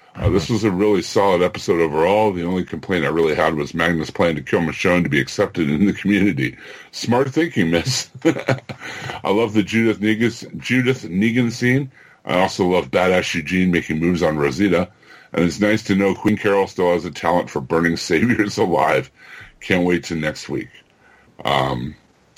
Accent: American